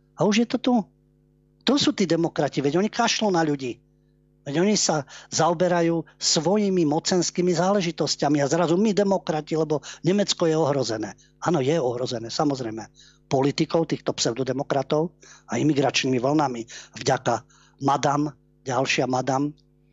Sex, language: male, Slovak